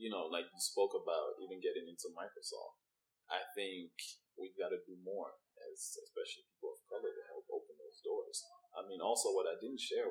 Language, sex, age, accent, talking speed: English, male, 20-39, American, 195 wpm